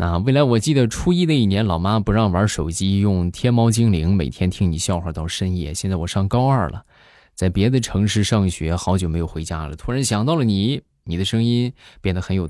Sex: male